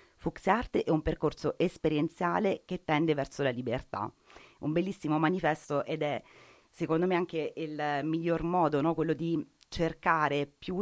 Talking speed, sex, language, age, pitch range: 140 wpm, female, Italian, 30-49, 145-160 Hz